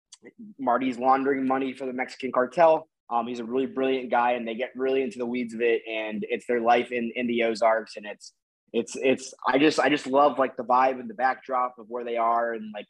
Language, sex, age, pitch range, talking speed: English, male, 20-39, 115-135 Hz, 235 wpm